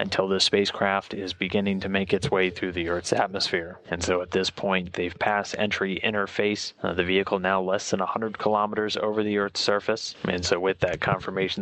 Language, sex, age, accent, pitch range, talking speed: English, male, 30-49, American, 95-105 Hz, 200 wpm